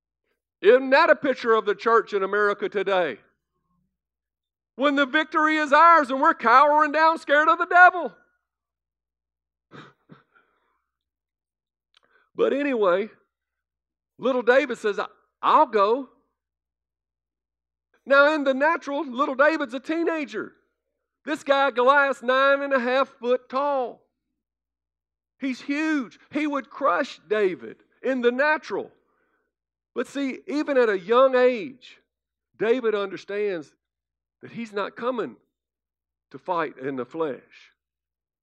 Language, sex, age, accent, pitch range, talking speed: English, male, 50-69, American, 200-290 Hz, 115 wpm